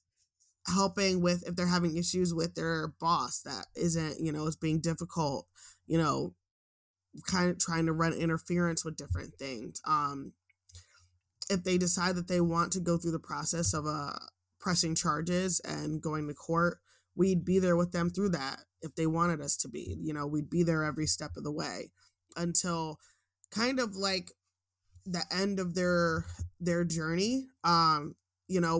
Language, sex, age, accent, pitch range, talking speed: English, male, 20-39, American, 155-175 Hz, 175 wpm